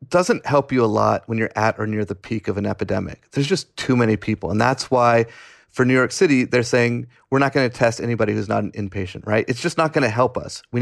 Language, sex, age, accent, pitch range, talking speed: English, male, 30-49, American, 110-130 Hz, 265 wpm